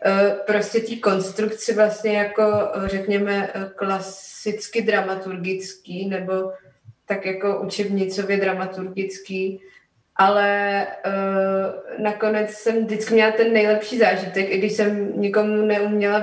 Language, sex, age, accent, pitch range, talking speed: Czech, female, 20-39, native, 195-215 Hz, 95 wpm